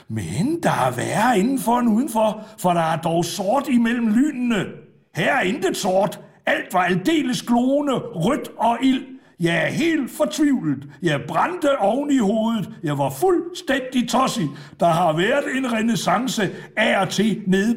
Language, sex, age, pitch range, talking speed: Danish, male, 60-79, 155-230 Hz, 160 wpm